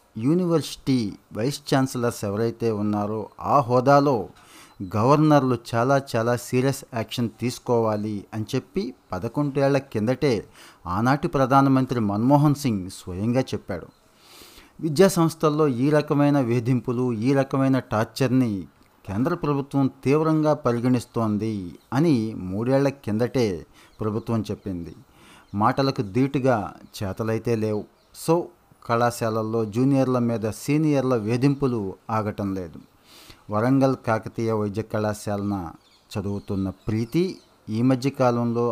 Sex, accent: male, native